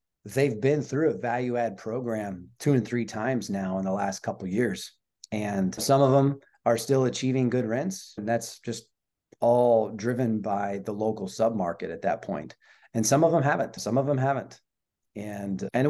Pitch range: 105-130 Hz